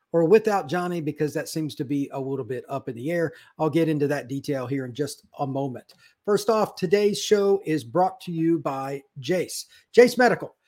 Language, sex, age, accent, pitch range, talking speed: English, male, 50-69, American, 145-195 Hz, 210 wpm